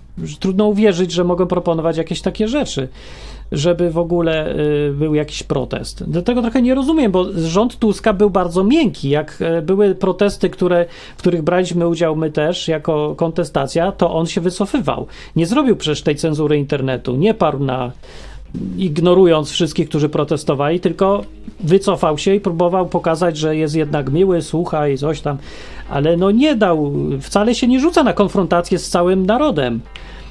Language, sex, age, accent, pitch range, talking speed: Polish, male, 40-59, native, 155-195 Hz, 160 wpm